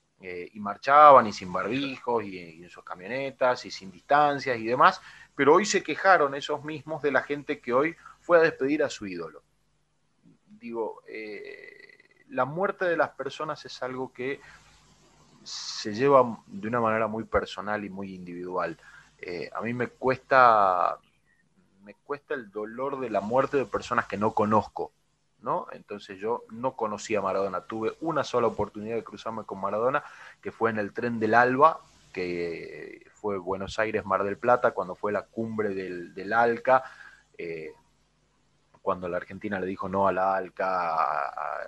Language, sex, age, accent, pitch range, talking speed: Spanish, male, 30-49, Argentinian, 95-135 Hz, 165 wpm